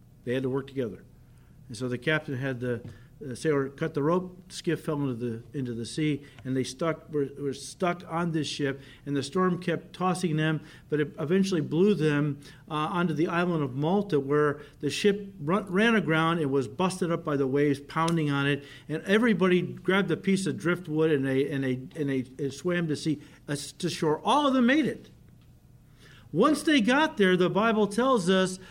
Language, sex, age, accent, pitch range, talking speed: English, male, 50-69, American, 150-215 Hz, 205 wpm